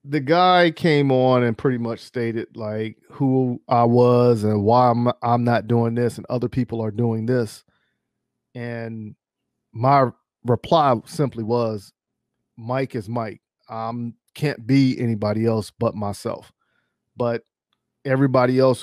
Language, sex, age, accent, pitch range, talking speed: English, male, 40-59, American, 110-130 Hz, 135 wpm